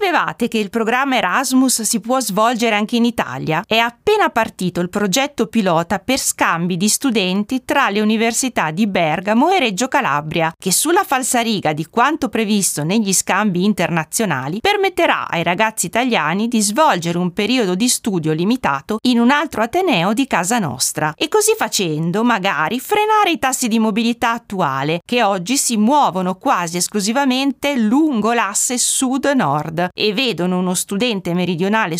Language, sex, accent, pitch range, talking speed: Italian, female, native, 185-260 Hz, 150 wpm